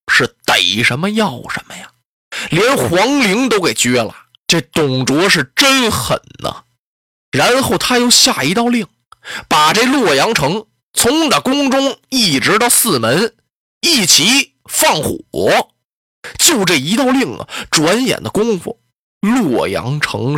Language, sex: Chinese, male